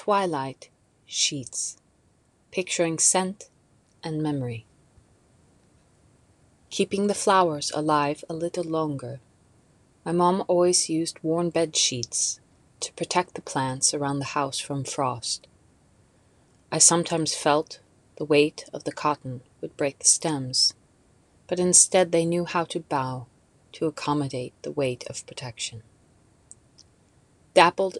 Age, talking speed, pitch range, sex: 30-49, 120 wpm, 135-170 Hz, female